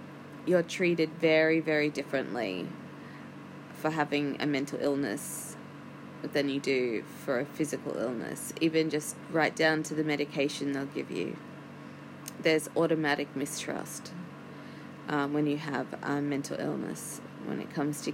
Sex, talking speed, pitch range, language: female, 135 wpm, 145-175 Hz, English